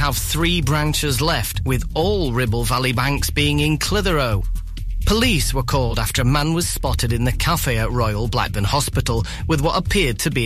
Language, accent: English, British